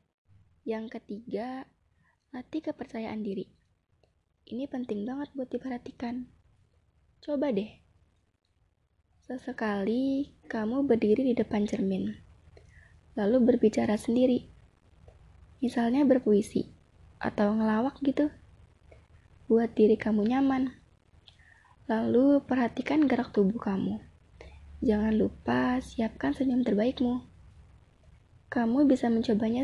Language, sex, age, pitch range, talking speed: Indonesian, female, 20-39, 200-255 Hz, 85 wpm